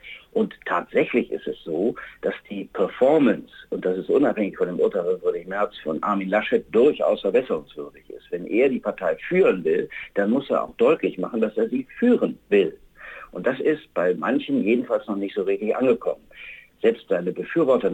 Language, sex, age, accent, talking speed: German, male, 50-69, German, 185 wpm